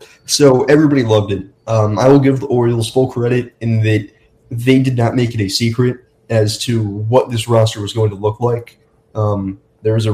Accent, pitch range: American, 110-120 Hz